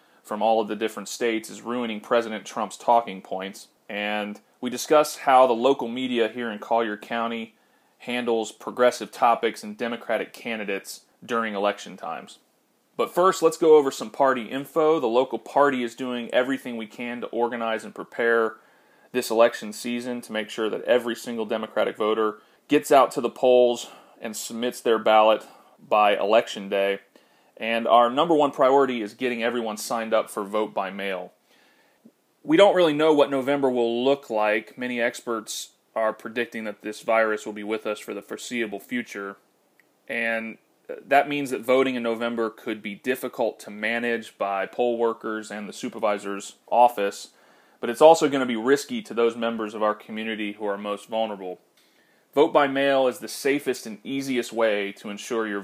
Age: 30-49